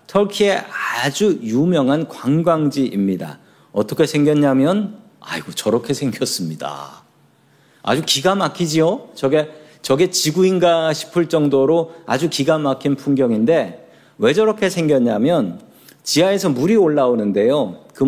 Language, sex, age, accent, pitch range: Korean, male, 40-59, native, 140-200 Hz